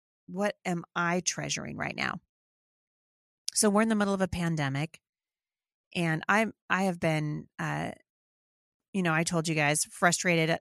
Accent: American